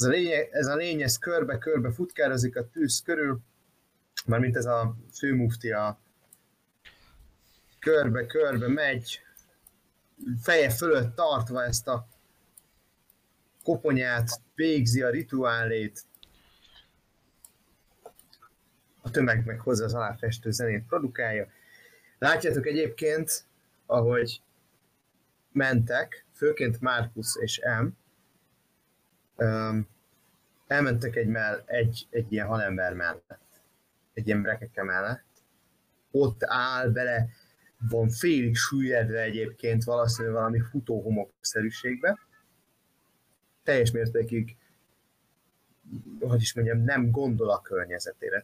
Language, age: Hungarian, 30-49